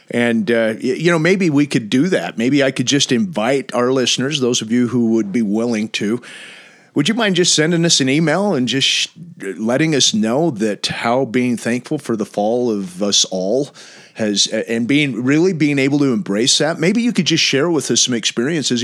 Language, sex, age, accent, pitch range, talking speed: English, male, 40-59, American, 110-150 Hz, 205 wpm